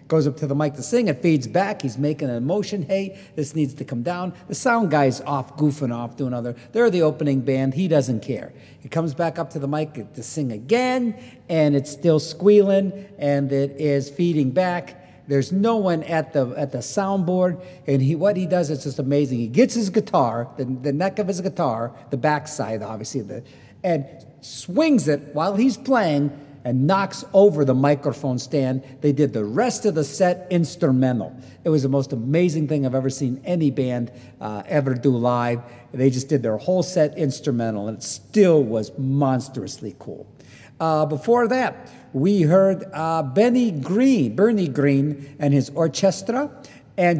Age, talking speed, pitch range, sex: 50-69, 185 wpm, 135-185 Hz, male